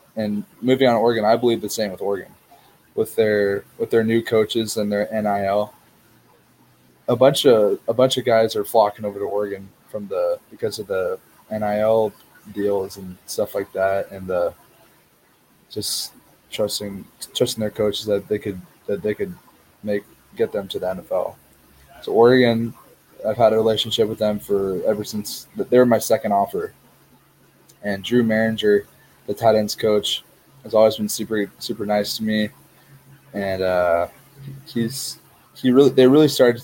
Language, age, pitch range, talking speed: English, 20-39, 100-115 Hz, 165 wpm